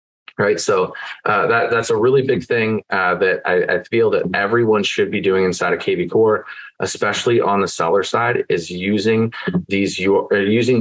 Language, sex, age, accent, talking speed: English, male, 30-49, American, 180 wpm